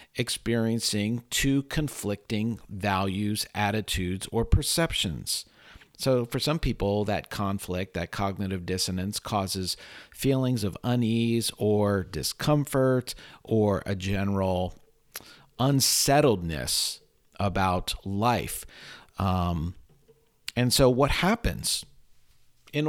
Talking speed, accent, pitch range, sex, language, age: 90 wpm, American, 95-130 Hz, male, English, 50-69